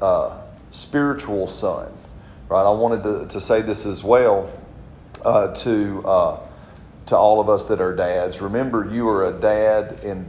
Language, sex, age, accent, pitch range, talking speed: English, male, 40-59, American, 95-115 Hz, 165 wpm